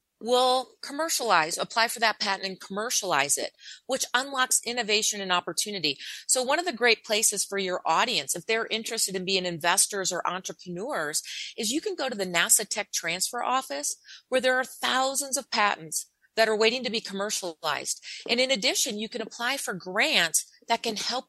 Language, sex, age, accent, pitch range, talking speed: English, female, 40-59, American, 185-245 Hz, 180 wpm